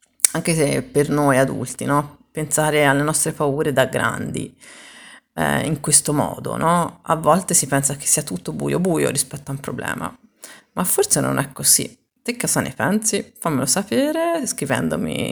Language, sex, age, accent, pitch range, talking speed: Italian, female, 30-49, native, 135-180 Hz, 160 wpm